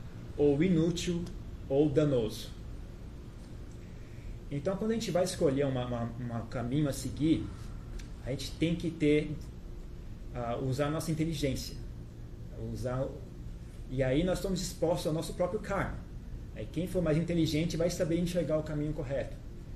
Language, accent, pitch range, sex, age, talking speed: Portuguese, Brazilian, 115-155 Hz, male, 30-49, 145 wpm